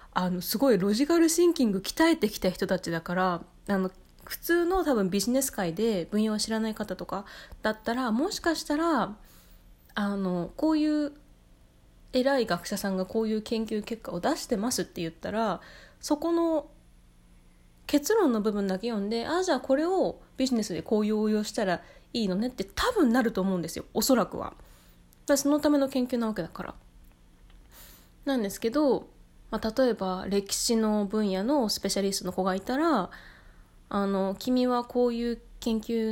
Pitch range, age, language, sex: 190-260 Hz, 20-39, Japanese, female